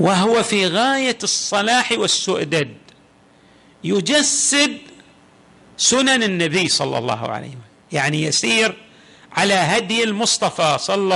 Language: Arabic